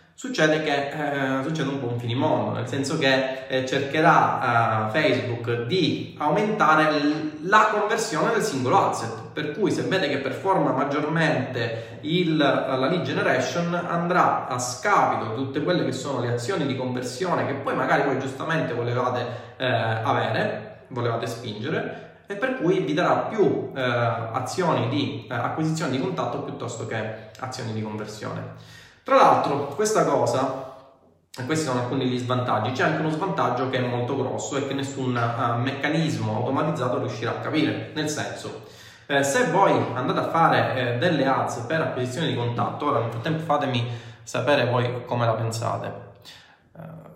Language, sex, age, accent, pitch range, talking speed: Italian, male, 20-39, native, 120-155 Hz, 155 wpm